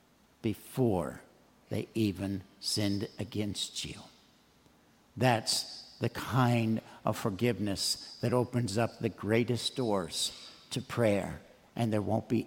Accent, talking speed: American, 110 wpm